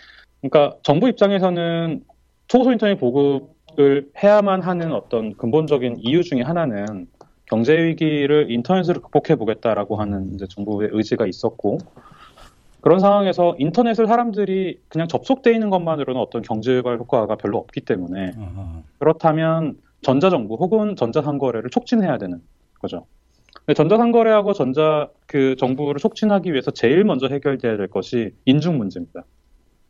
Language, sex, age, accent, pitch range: Korean, male, 30-49, native, 110-175 Hz